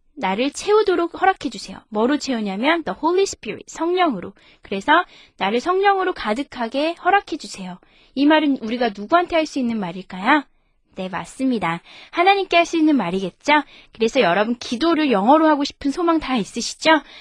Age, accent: 20-39, native